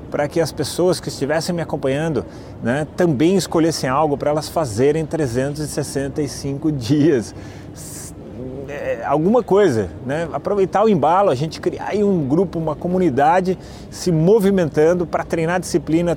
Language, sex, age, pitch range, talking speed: Portuguese, male, 30-49, 140-180 Hz, 135 wpm